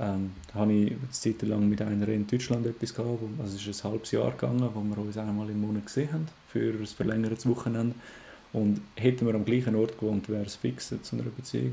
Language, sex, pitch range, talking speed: German, male, 105-115 Hz, 230 wpm